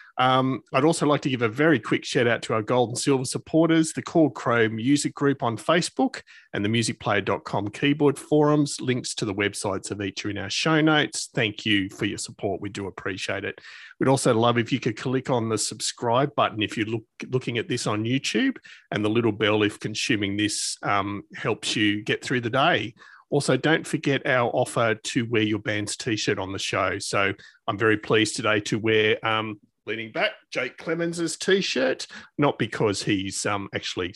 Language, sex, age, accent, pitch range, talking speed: English, male, 40-59, Australian, 110-150 Hz, 195 wpm